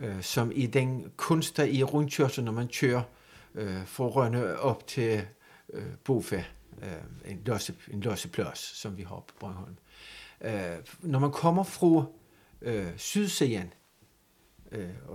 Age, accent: 60-79, native